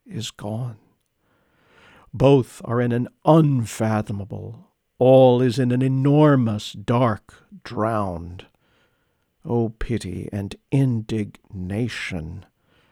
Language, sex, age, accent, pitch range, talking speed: English, male, 50-69, American, 105-140 Hz, 90 wpm